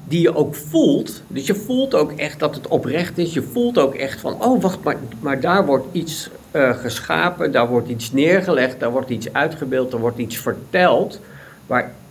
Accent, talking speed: Dutch, 200 wpm